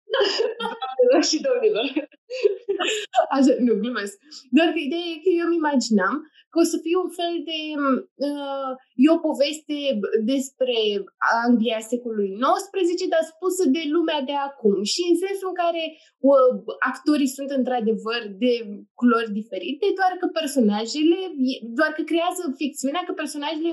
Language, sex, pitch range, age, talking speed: Romanian, female, 235-320 Hz, 20-39, 140 wpm